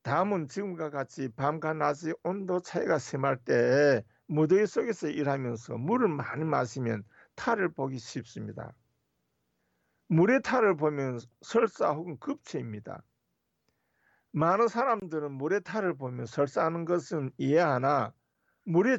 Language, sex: Korean, male